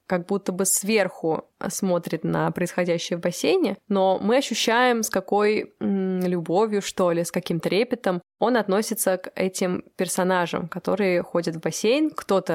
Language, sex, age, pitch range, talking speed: Russian, female, 20-39, 175-210 Hz, 150 wpm